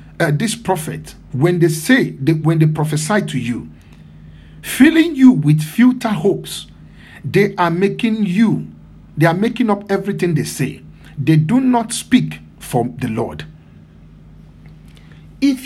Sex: male